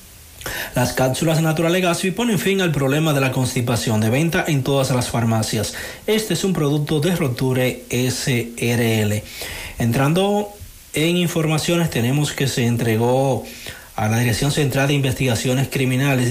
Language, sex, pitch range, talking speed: Spanish, male, 120-145 Hz, 140 wpm